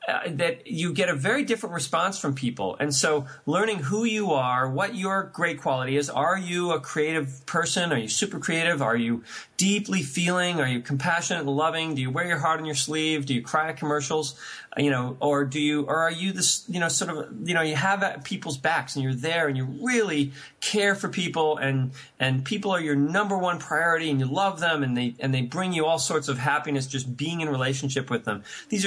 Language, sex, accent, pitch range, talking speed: English, male, American, 135-185 Hz, 230 wpm